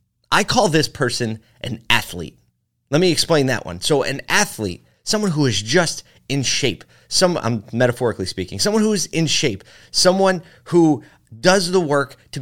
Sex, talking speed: male, 170 wpm